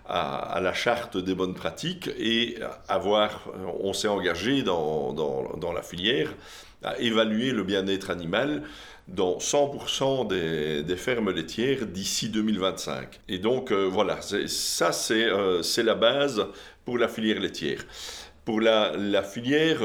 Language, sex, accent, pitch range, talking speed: French, male, French, 95-115 Hz, 145 wpm